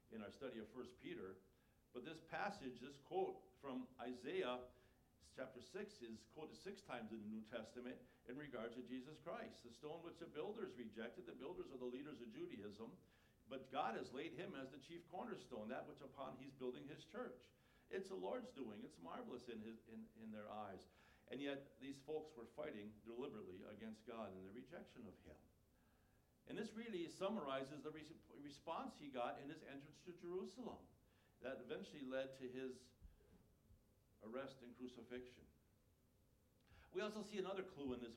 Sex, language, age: male, English, 60-79